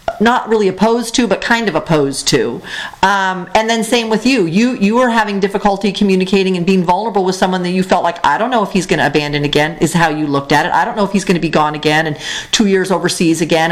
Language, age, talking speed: English, 40-59, 265 wpm